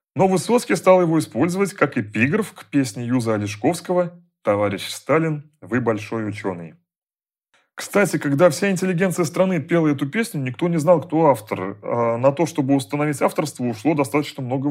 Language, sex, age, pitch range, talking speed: Russian, male, 30-49, 115-170 Hz, 155 wpm